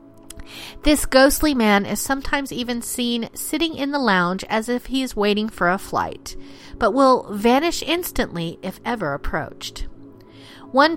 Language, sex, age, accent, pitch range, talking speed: English, female, 40-59, American, 195-270 Hz, 150 wpm